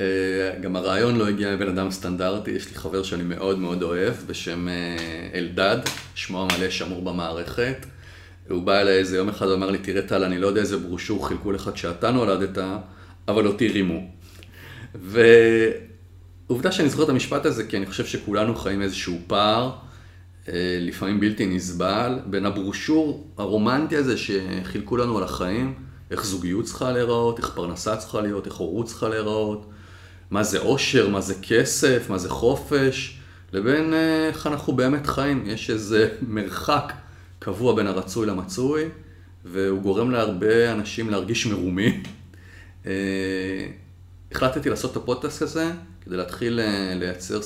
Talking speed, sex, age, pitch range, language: 140 wpm, male, 40-59, 90-115 Hz, Hebrew